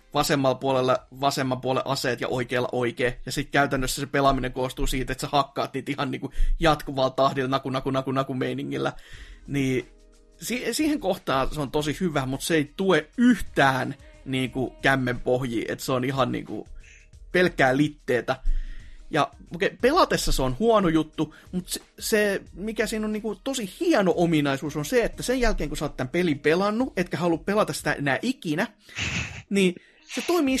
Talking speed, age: 175 wpm, 30-49